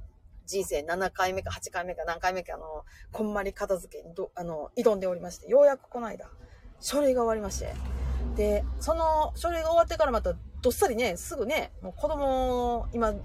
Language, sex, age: Japanese, female, 30-49